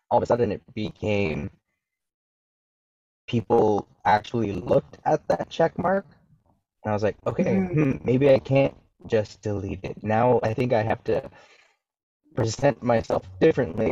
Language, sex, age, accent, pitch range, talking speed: English, male, 20-39, American, 100-125 Hz, 140 wpm